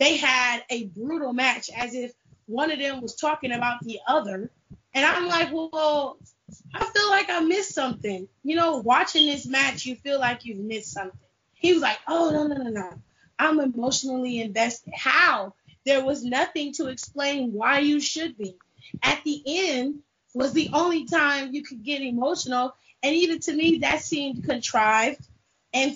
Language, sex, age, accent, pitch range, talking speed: English, female, 20-39, American, 235-300 Hz, 175 wpm